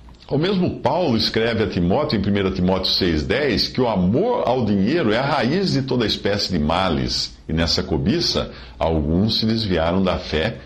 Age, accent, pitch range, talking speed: 50-69, Brazilian, 80-115 Hz, 180 wpm